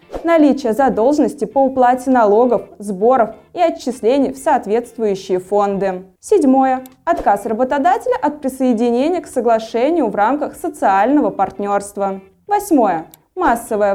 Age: 20-39